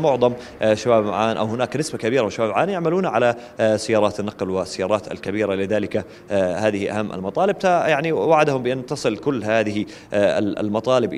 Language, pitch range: Arabic, 105-130 Hz